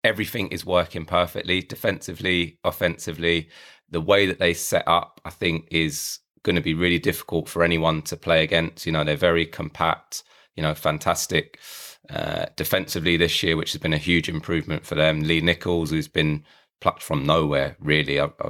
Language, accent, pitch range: English, British, 80-85 Hz